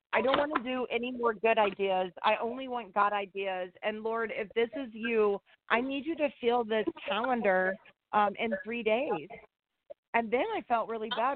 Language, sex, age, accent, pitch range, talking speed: English, female, 30-49, American, 210-240 Hz, 195 wpm